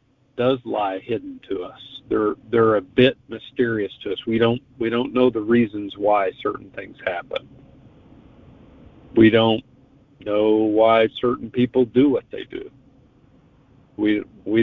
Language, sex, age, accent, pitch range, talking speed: English, male, 50-69, American, 110-130 Hz, 145 wpm